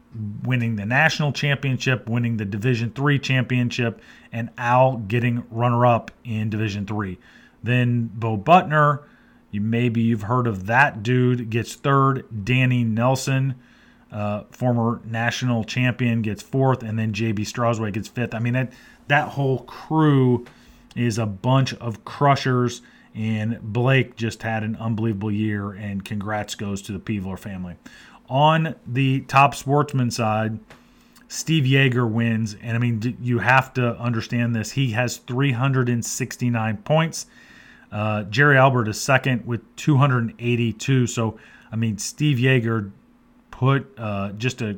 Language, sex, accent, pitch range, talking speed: English, male, American, 110-130 Hz, 140 wpm